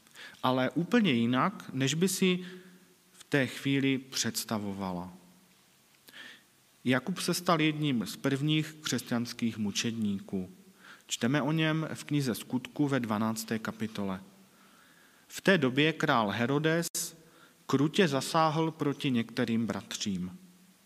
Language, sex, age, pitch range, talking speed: Czech, male, 40-59, 115-155 Hz, 105 wpm